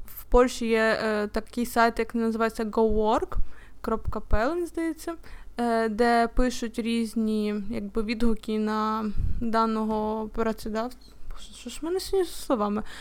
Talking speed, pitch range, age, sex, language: 100 wpm, 225-275 Hz, 20-39, female, Ukrainian